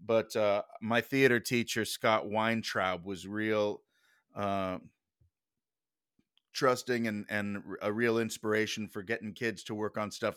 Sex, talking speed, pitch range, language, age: male, 135 wpm, 100-120 Hz, English, 30-49